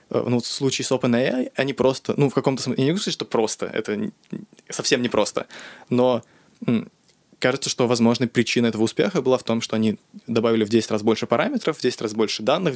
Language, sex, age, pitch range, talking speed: Russian, male, 20-39, 110-130 Hz, 210 wpm